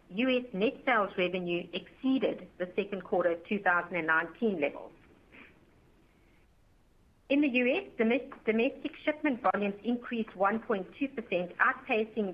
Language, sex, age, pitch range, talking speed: English, female, 60-79, 185-235 Hz, 90 wpm